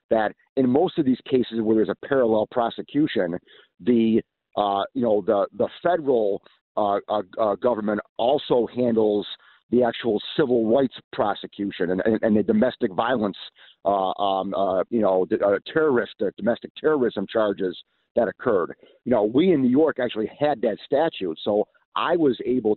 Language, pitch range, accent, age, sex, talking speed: English, 105-130 Hz, American, 50-69, male, 160 wpm